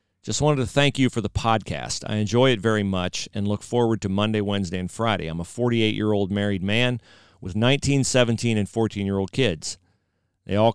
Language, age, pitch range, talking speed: English, 40-59, 95-120 Hz, 190 wpm